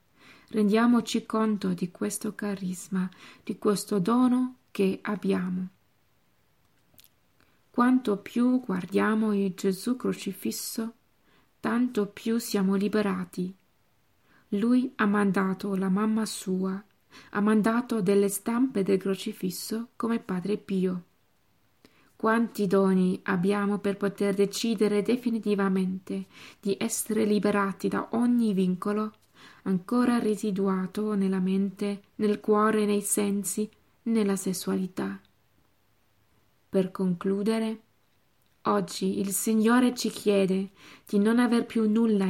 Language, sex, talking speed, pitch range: Italian, female, 100 wpm, 190-220 Hz